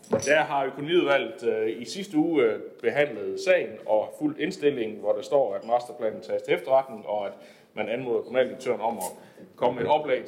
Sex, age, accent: male, 30-49, native